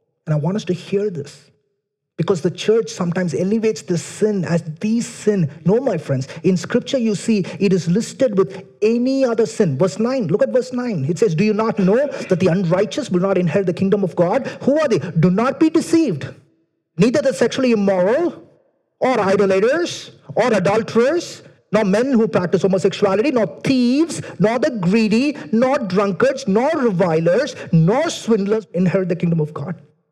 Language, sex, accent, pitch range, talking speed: English, male, Indian, 180-255 Hz, 175 wpm